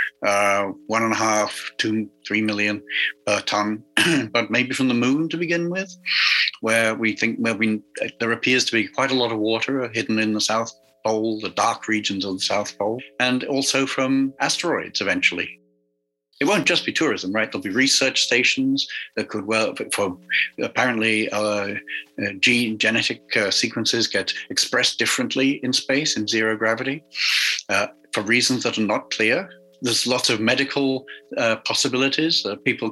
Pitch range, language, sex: 105-130 Hz, English, male